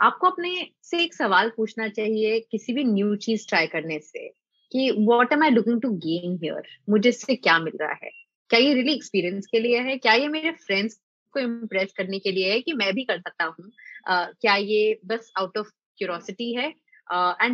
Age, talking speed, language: 20-39, 210 wpm, English